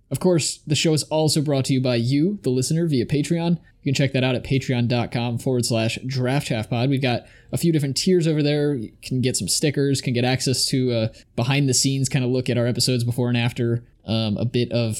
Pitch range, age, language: 120-145 Hz, 20-39, English